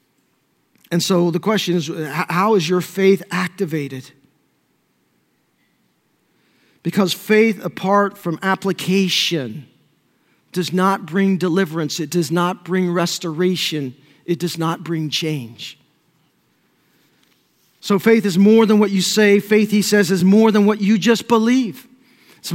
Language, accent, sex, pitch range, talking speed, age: English, American, male, 200-255 Hz, 130 wpm, 50-69